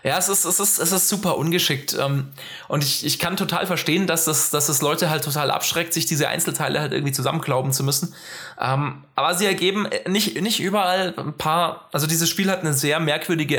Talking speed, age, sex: 205 wpm, 20-39, male